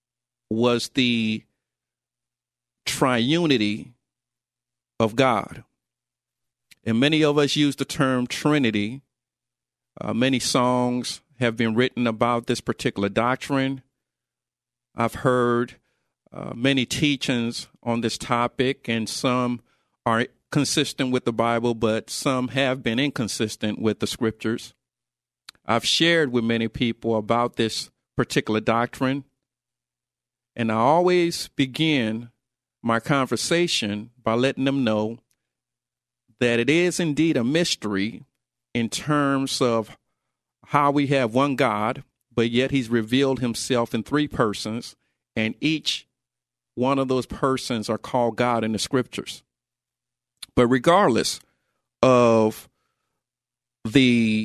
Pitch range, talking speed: 115-135 Hz, 115 wpm